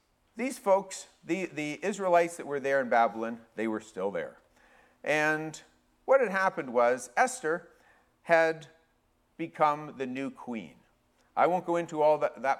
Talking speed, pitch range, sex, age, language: 150 wpm, 130-170 Hz, male, 50-69, English